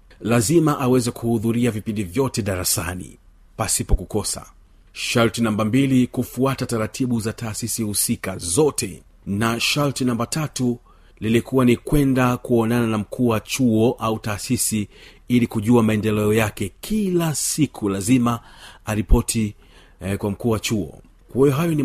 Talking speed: 130 wpm